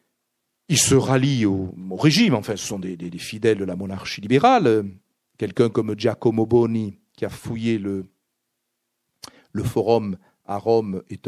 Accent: French